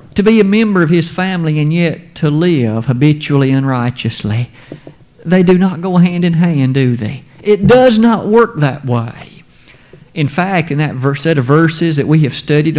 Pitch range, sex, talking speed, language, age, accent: 140-190 Hz, male, 190 wpm, English, 50-69, American